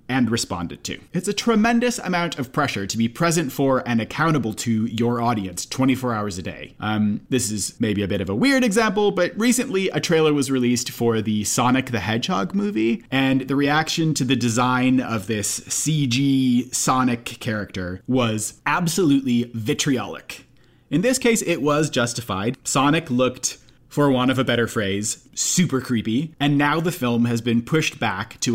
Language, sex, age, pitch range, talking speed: English, male, 30-49, 110-150 Hz, 175 wpm